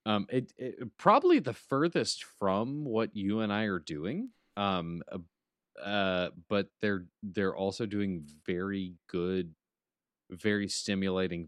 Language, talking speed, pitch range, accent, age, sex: English, 130 wpm, 95-120 Hz, American, 30-49, male